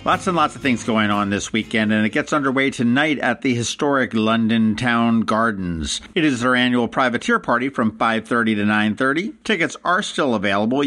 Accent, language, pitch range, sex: American, English, 115-150 Hz, male